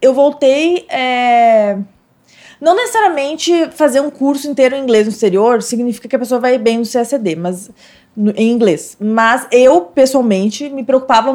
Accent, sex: Brazilian, female